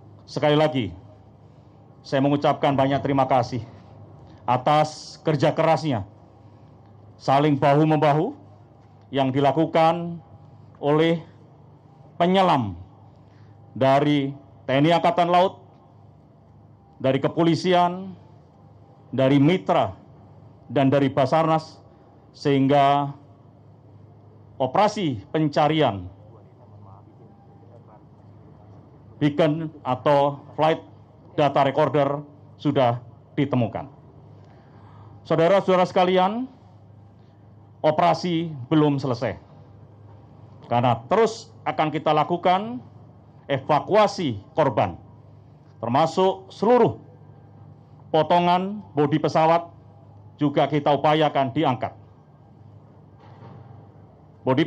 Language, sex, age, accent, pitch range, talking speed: Indonesian, male, 50-69, native, 115-155 Hz, 65 wpm